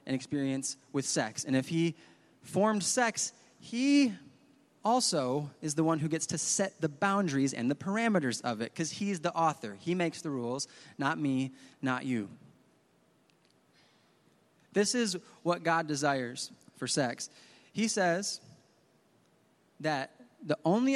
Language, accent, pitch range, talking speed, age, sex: English, American, 140-200 Hz, 140 wpm, 20-39, male